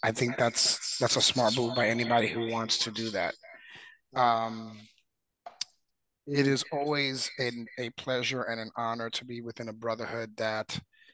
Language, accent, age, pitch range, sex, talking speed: English, American, 30-49, 115-135 Hz, male, 160 wpm